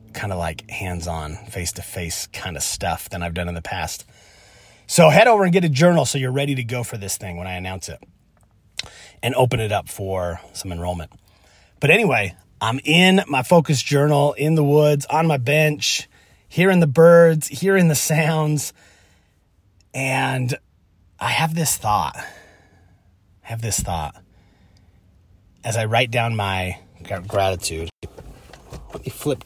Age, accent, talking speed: 30-49, American, 155 wpm